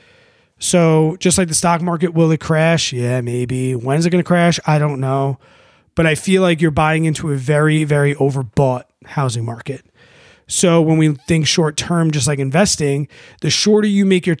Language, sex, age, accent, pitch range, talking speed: English, male, 30-49, American, 140-175 Hz, 195 wpm